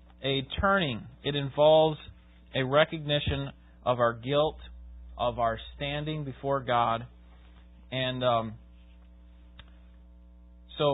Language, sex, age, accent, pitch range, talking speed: English, male, 30-49, American, 100-145 Hz, 95 wpm